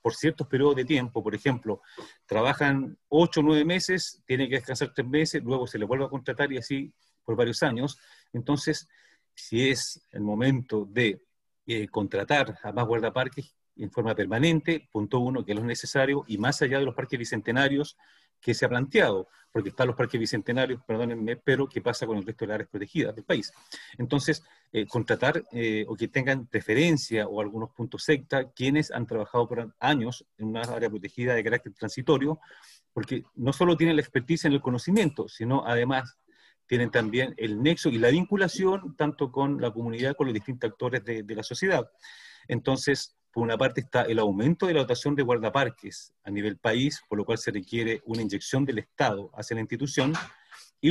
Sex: male